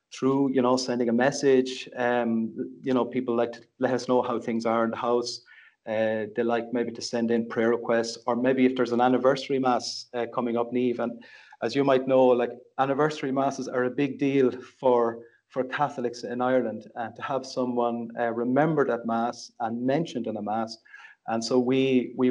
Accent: Irish